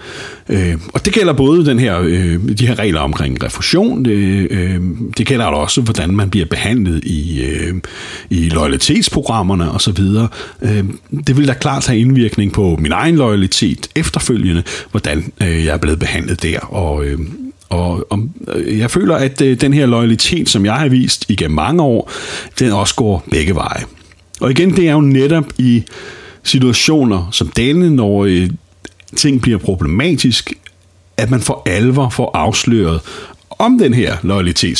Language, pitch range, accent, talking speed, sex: Danish, 90-135 Hz, native, 145 wpm, male